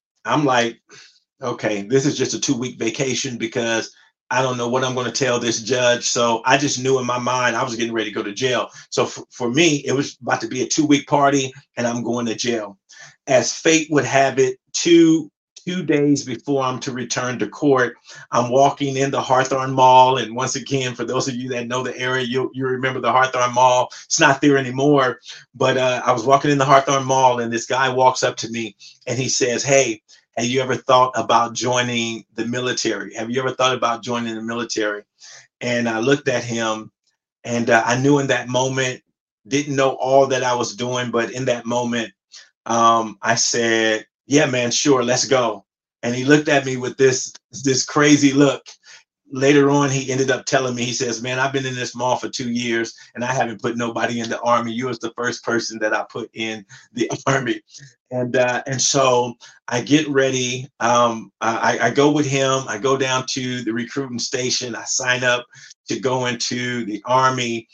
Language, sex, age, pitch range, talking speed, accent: English, male, 40-59, 120-135 Hz, 210 wpm, American